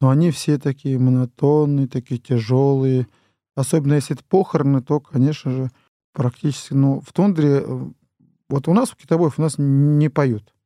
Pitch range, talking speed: 125-145 Hz, 150 wpm